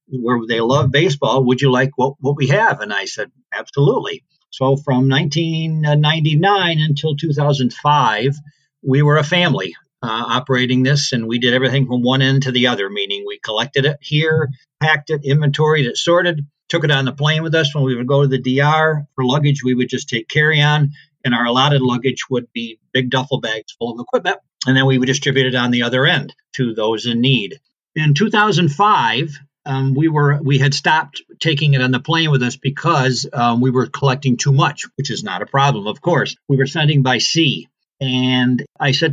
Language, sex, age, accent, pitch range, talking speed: English, male, 50-69, American, 125-150 Hz, 200 wpm